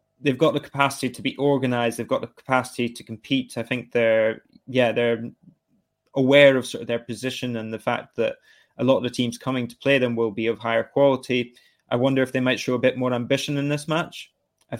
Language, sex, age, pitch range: English, male, 20-39, 115-130 Hz